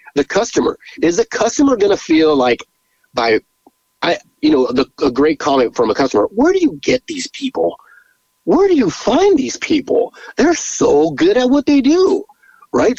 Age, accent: 30-49, American